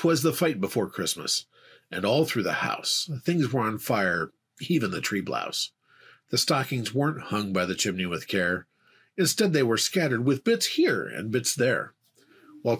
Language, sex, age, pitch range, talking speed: English, male, 40-59, 130-190 Hz, 180 wpm